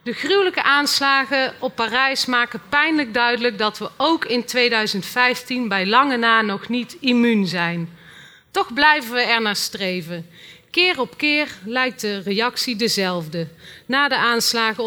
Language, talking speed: Dutch, 140 wpm